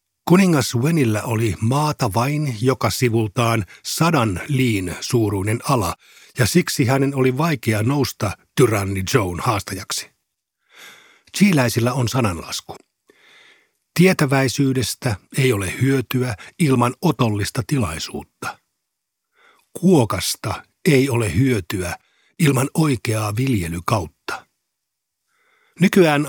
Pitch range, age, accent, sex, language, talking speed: 110-140 Hz, 50-69, native, male, Finnish, 85 wpm